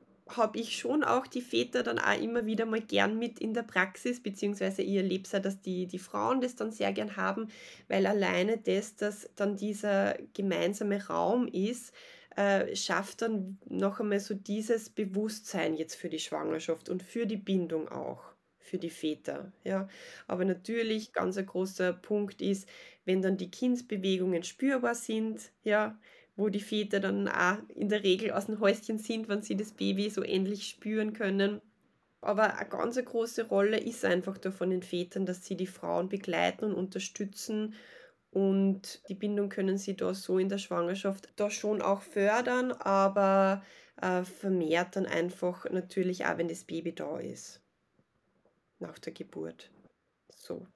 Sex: female